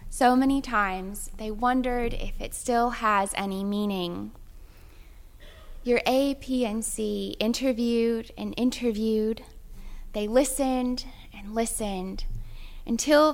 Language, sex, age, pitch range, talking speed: English, female, 10-29, 205-255 Hz, 110 wpm